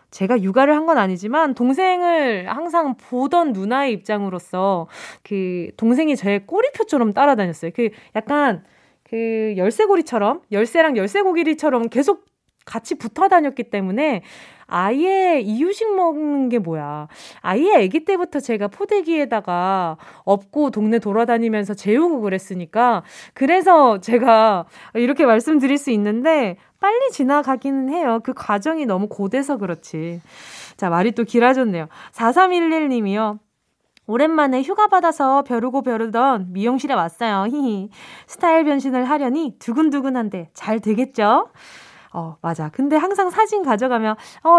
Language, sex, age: Korean, female, 20-39